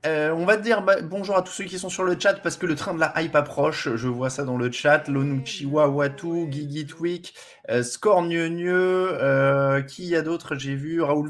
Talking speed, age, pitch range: 220 wpm, 20-39, 125-165 Hz